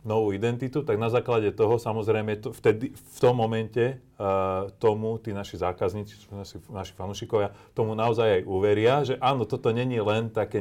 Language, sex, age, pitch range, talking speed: Slovak, male, 30-49, 95-115 Hz, 155 wpm